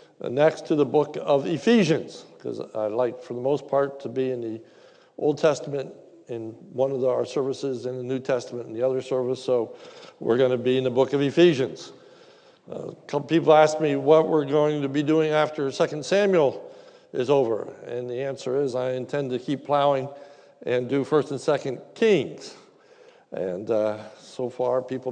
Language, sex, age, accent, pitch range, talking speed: English, male, 60-79, American, 130-170 Hz, 190 wpm